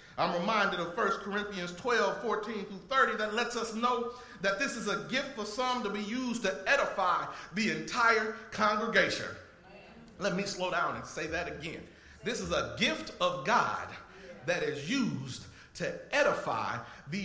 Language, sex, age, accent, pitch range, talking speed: English, male, 40-59, American, 210-275 Hz, 165 wpm